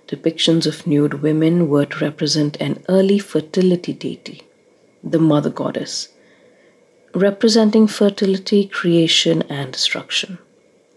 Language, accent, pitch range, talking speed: English, Indian, 165-225 Hz, 105 wpm